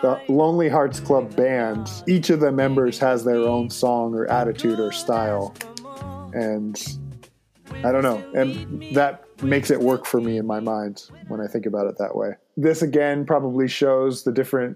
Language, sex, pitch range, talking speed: English, male, 115-140 Hz, 180 wpm